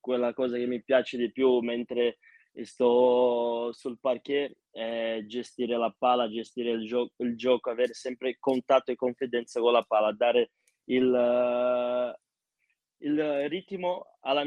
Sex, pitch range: male, 120-135 Hz